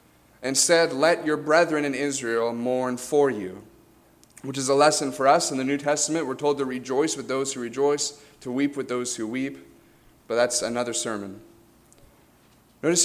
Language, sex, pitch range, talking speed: English, male, 120-150 Hz, 180 wpm